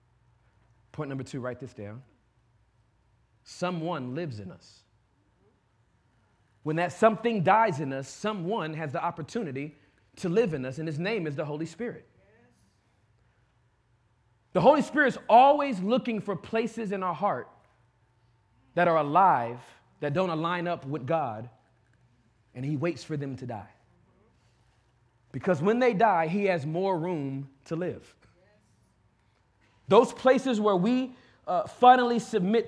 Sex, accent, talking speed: male, American, 140 wpm